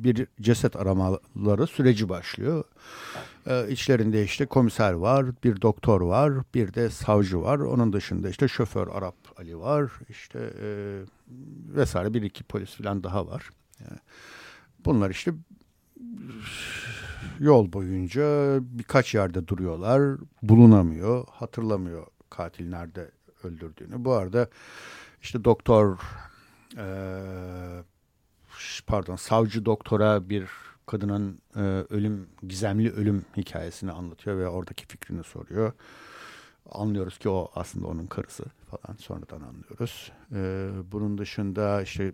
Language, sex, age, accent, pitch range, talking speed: Turkish, male, 60-79, native, 95-115 Hz, 110 wpm